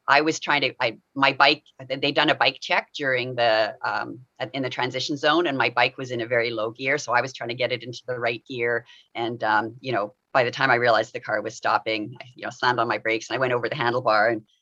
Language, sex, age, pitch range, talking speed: English, female, 30-49, 115-140 Hz, 270 wpm